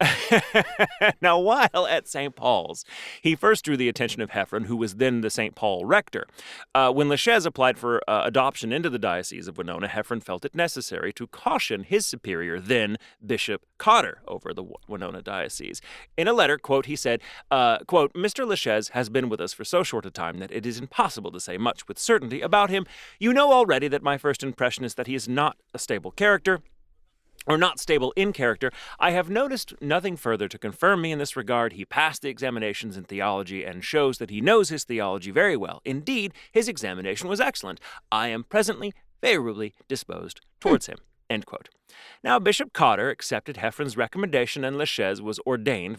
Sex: male